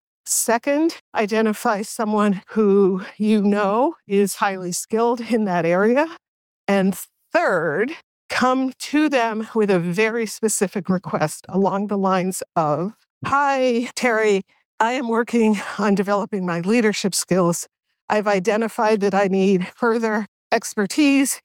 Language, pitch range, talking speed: English, 190-230 Hz, 120 wpm